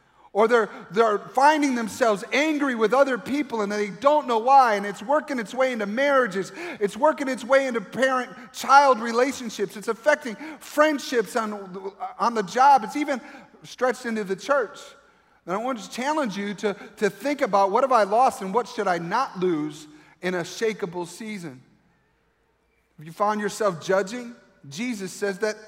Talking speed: 170 wpm